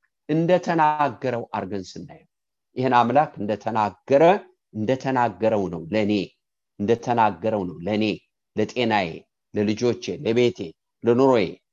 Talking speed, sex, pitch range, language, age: 75 wpm, male, 110-165 Hz, English, 50-69